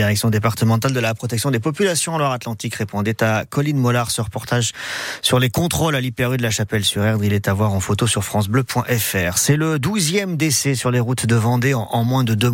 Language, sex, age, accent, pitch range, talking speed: French, male, 40-59, French, 115-135 Hz, 205 wpm